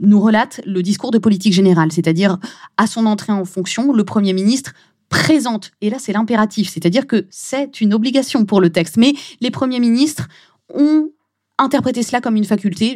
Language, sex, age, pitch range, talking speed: French, female, 20-39, 185-235 Hz, 180 wpm